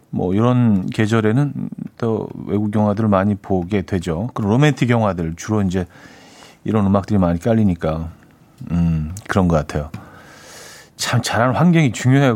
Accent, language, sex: native, Korean, male